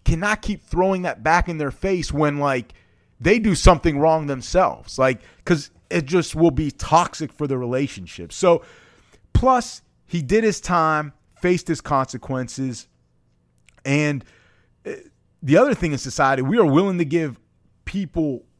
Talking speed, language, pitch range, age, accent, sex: 150 wpm, English, 120-170 Hz, 30-49, American, male